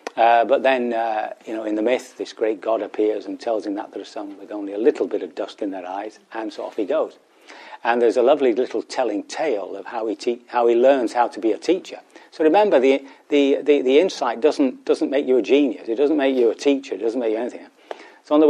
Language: English